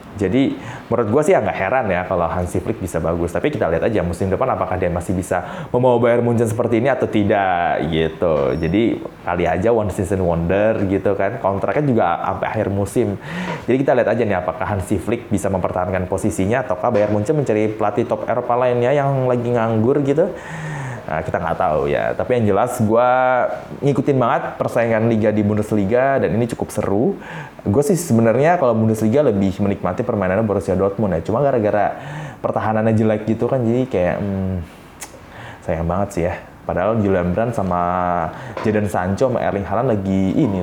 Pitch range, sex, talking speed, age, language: 95-125 Hz, male, 175 wpm, 20-39, Indonesian